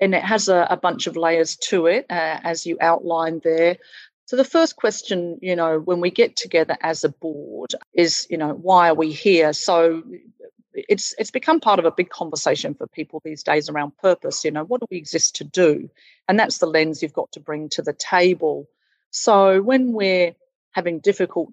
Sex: female